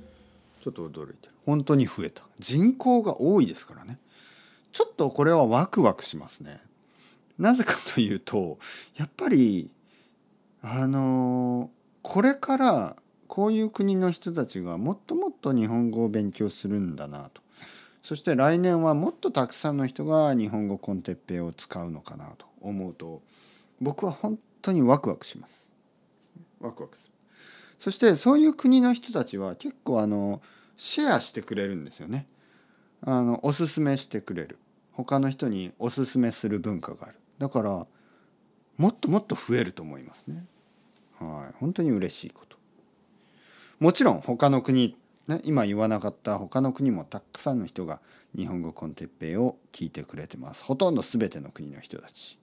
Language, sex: Japanese, male